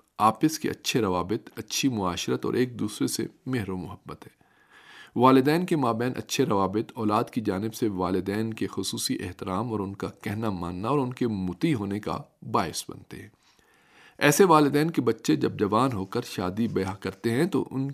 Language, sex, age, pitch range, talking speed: Urdu, male, 40-59, 100-135 Hz, 185 wpm